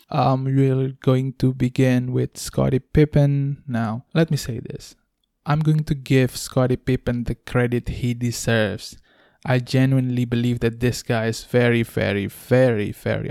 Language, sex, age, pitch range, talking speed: English, male, 20-39, 120-140 Hz, 155 wpm